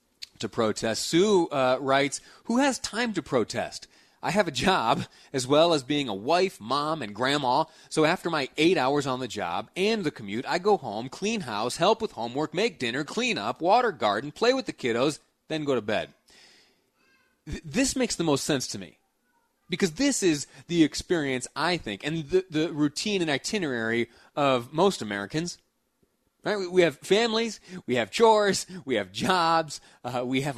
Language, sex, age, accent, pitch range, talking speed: English, male, 30-49, American, 125-185 Hz, 180 wpm